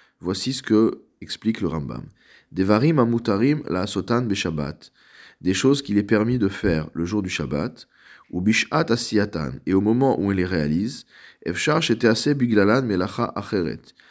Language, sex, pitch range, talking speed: French, male, 85-115 Hz, 115 wpm